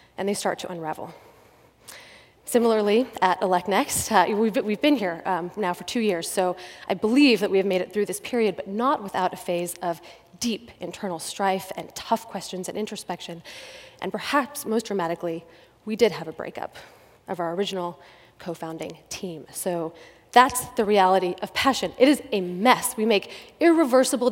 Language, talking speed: English, 175 wpm